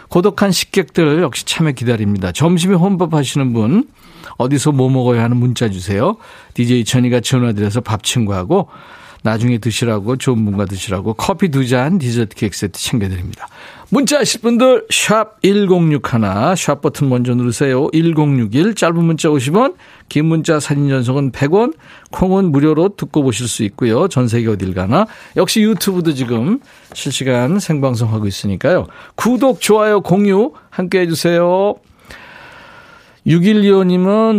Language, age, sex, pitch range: Korean, 50-69, male, 125-185 Hz